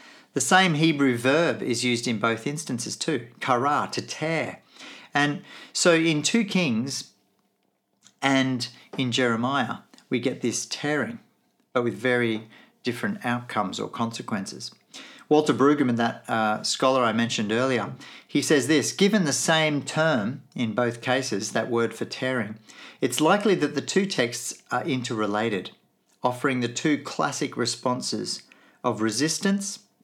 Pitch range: 115-160 Hz